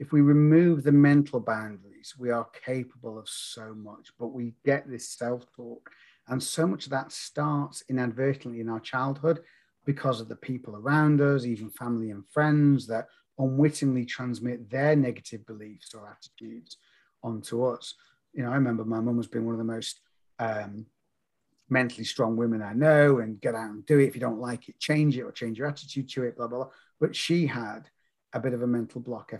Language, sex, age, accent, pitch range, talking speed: English, male, 40-59, British, 120-145 Hz, 195 wpm